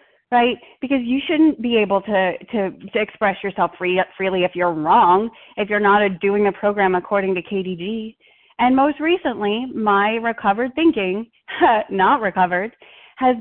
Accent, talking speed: American, 145 wpm